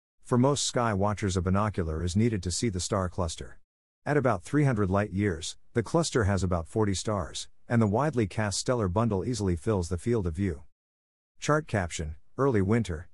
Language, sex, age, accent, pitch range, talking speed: English, male, 50-69, American, 90-115 Hz, 185 wpm